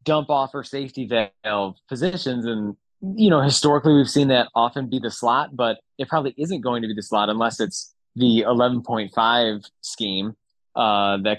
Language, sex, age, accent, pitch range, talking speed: English, male, 20-39, American, 110-150 Hz, 175 wpm